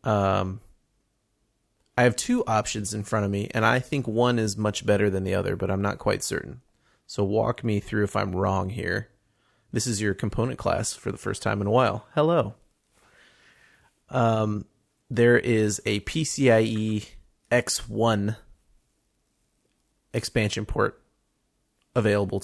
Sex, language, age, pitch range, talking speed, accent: male, English, 30-49, 100-115 Hz, 145 wpm, American